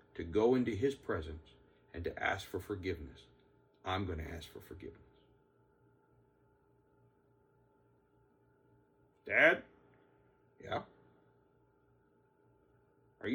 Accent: American